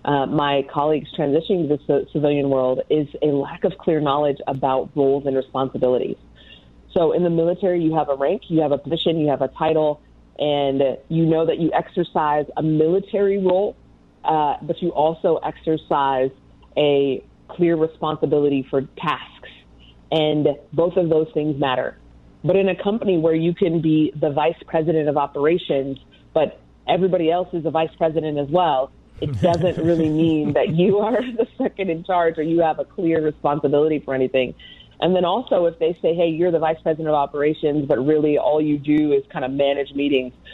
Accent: American